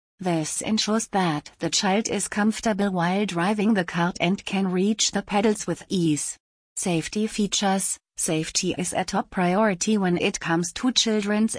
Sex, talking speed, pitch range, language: female, 155 wpm, 170-205 Hz, English